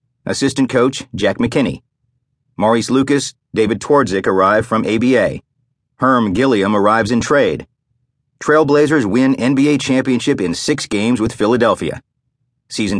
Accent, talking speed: American, 120 wpm